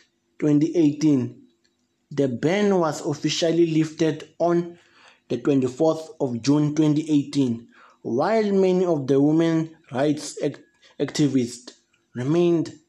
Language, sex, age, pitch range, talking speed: English, male, 20-39, 145-170 Hz, 95 wpm